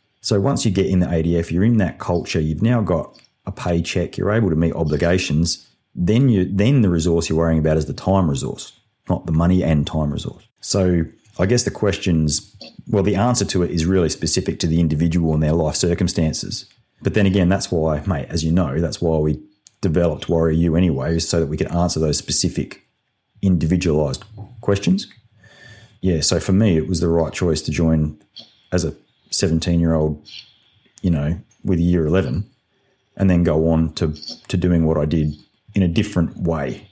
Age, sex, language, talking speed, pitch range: 30-49, male, English, 195 wpm, 80-100 Hz